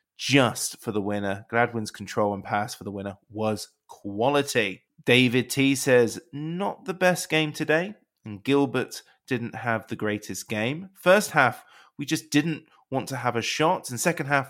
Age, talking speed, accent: 20-39, 170 wpm, British